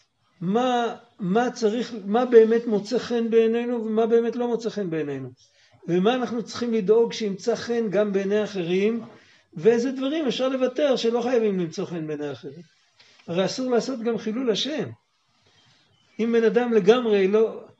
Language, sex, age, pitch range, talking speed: Hebrew, male, 60-79, 185-235 Hz, 150 wpm